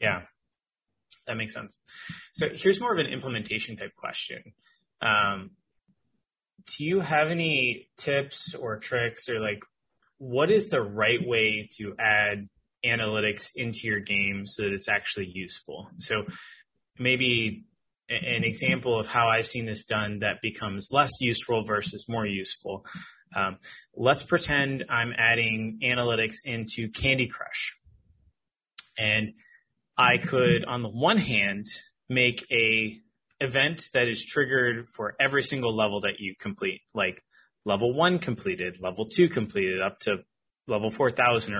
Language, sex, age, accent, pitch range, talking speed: English, male, 20-39, American, 105-130 Hz, 135 wpm